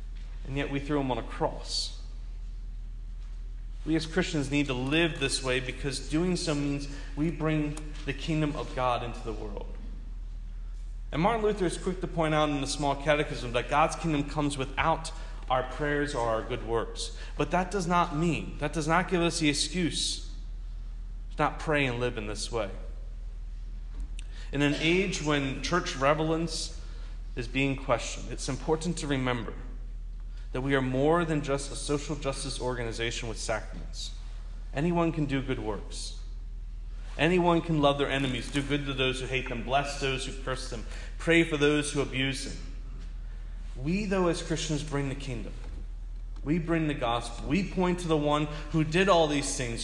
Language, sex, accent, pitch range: English, male, American, 130-160 Hz